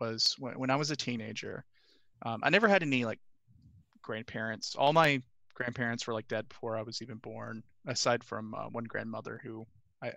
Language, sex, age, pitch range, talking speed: English, male, 20-39, 115-130 Hz, 190 wpm